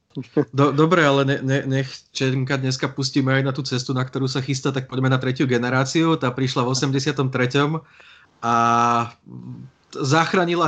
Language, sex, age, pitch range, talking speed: Slovak, male, 20-39, 125-145 Hz, 150 wpm